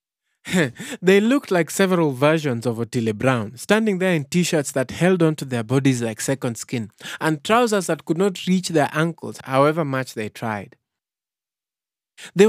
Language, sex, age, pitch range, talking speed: English, male, 30-49, 125-180 Hz, 160 wpm